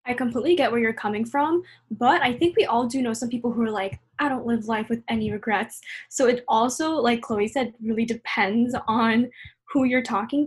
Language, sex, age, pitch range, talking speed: English, female, 10-29, 215-260 Hz, 220 wpm